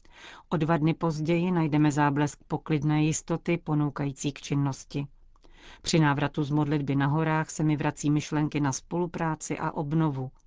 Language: Czech